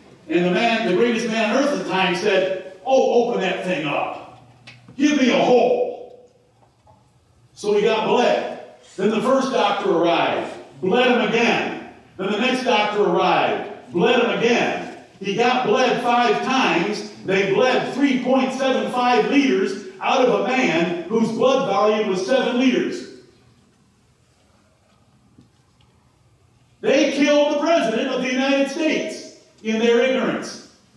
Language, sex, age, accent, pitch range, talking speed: English, male, 50-69, American, 205-265 Hz, 140 wpm